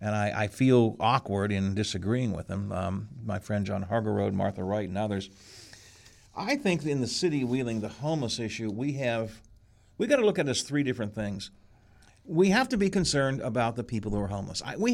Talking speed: 205 wpm